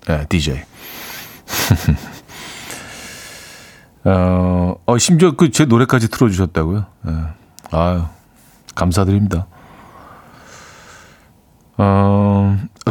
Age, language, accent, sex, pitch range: 40-59, Korean, native, male, 95-140 Hz